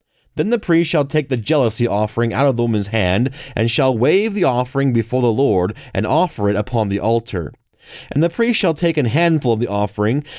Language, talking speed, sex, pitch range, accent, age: English, 215 wpm, male, 110-145 Hz, American, 30-49